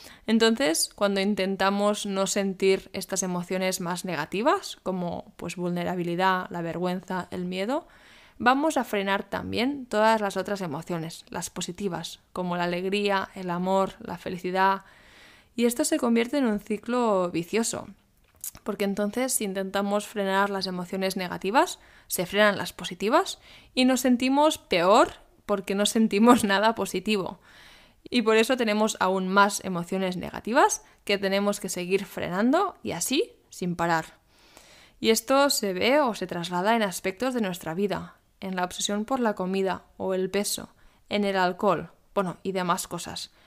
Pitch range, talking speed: 185-225 Hz, 145 wpm